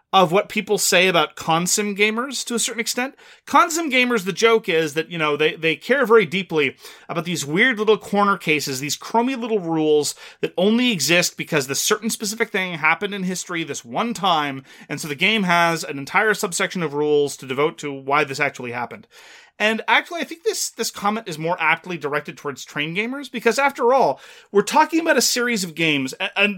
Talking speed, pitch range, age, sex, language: 205 wpm, 150-220 Hz, 30-49, male, English